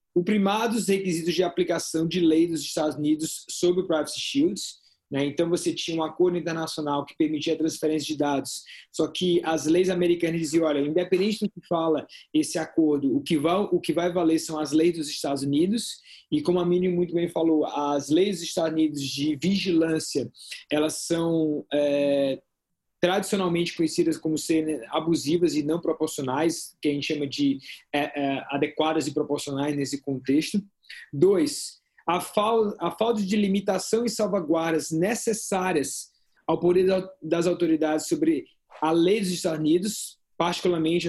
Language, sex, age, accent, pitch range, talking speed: Portuguese, male, 20-39, Brazilian, 150-180 Hz, 160 wpm